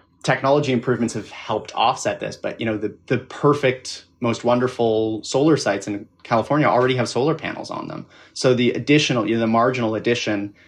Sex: male